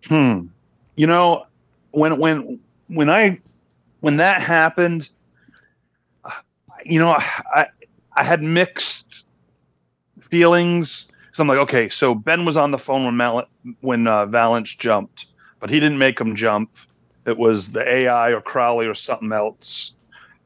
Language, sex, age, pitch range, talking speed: English, male, 40-59, 105-145 Hz, 145 wpm